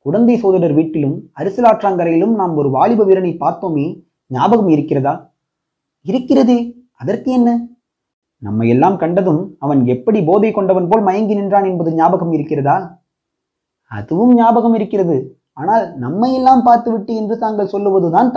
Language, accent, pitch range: Tamil, native, 160-230 Hz